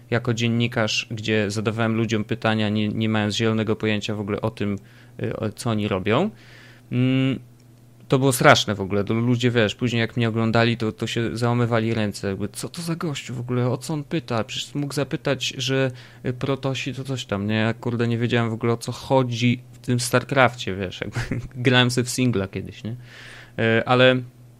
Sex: male